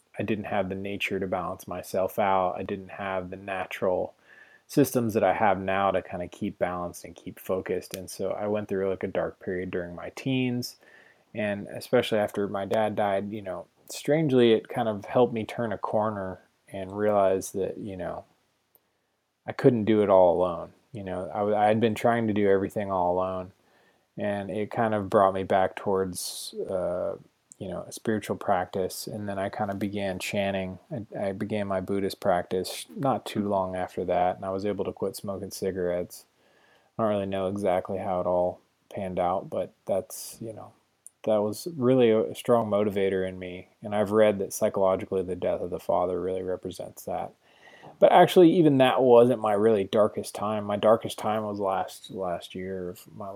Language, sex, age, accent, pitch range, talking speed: English, male, 20-39, American, 95-110 Hz, 190 wpm